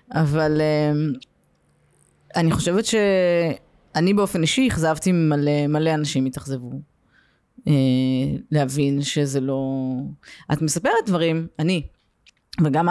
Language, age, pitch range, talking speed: Hebrew, 20-39, 145-205 Hz, 100 wpm